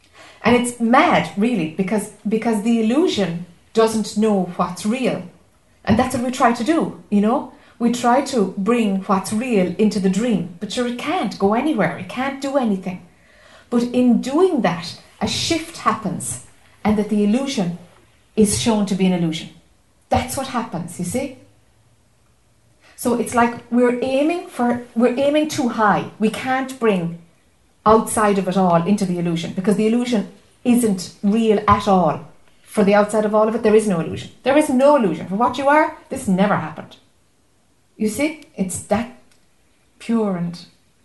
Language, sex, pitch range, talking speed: English, female, 185-240 Hz, 170 wpm